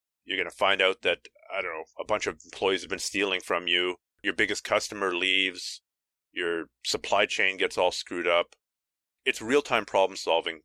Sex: male